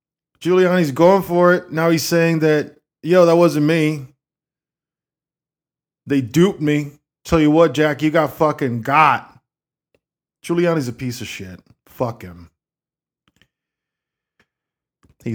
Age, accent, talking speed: 20-39, American, 120 wpm